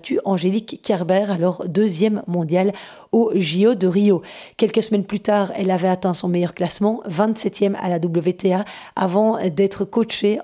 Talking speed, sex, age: 150 wpm, female, 30-49